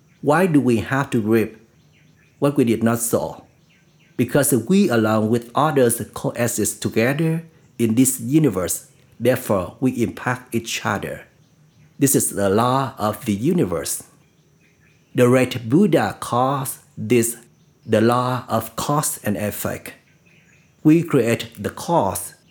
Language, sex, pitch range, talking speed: Vietnamese, male, 110-140 Hz, 130 wpm